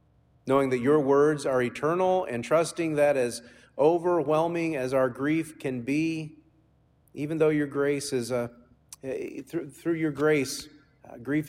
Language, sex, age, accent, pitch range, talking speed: English, male, 40-59, American, 120-145 Hz, 130 wpm